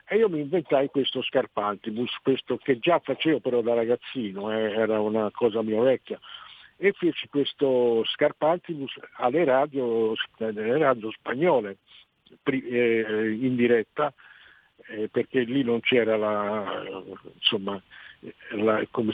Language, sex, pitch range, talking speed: Italian, male, 110-150 Hz, 120 wpm